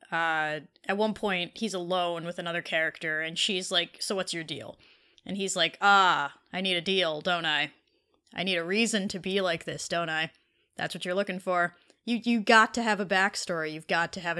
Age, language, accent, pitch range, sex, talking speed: 20-39, English, American, 175-225 Hz, female, 215 wpm